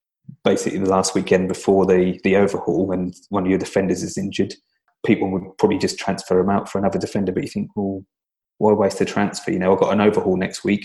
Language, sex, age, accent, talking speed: English, male, 20-39, British, 230 wpm